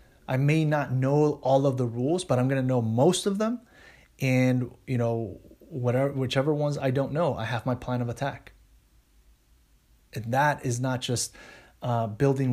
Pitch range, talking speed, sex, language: 120-140 Hz, 180 wpm, male, English